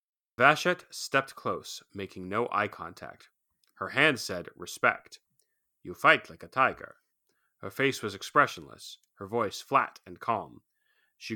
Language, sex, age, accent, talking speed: English, male, 30-49, American, 135 wpm